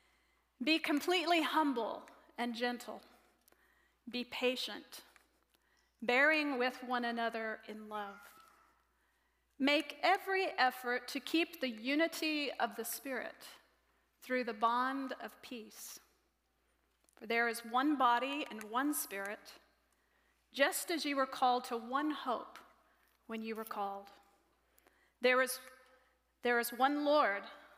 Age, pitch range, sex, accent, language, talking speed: 40-59, 225-285 Hz, female, American, English, 115 wpm